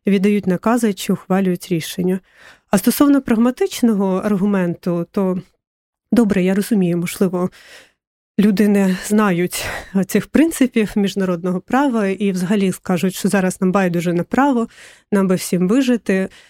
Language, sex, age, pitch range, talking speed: Ukrainian, female, 30-49, 190-235 Hz, 125 wpm